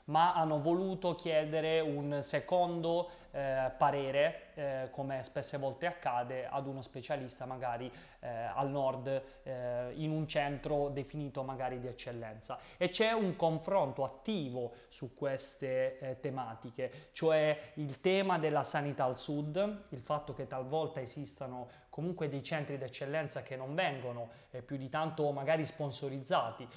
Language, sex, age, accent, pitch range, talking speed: Italian, male, 20-39, native, 135-165 Hz, 140 wpm